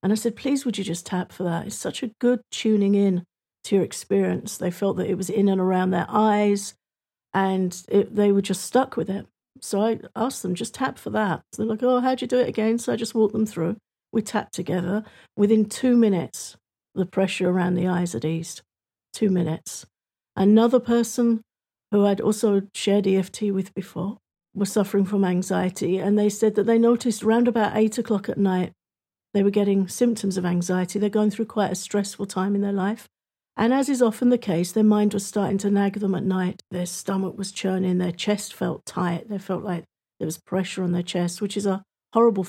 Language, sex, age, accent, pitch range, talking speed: English, female, 50-69, British, 185-220 Hz, 210 wpm